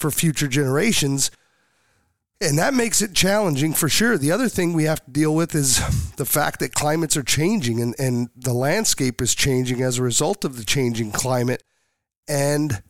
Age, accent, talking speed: 40-59, American, 180 wpm